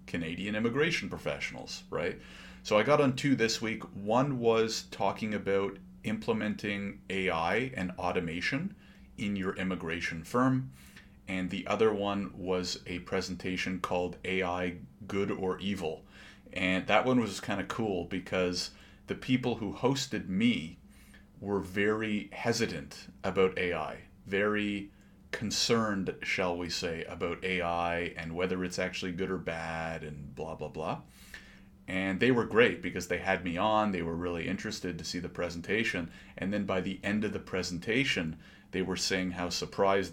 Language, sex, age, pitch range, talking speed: English, male, 30-49, 90-105 Hz, 150 wpm